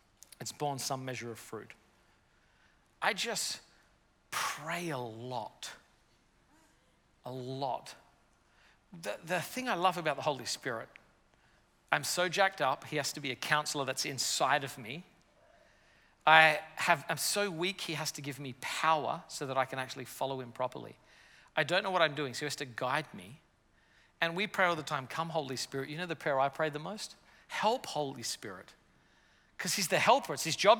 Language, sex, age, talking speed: English, male, 40-59, 185 wpm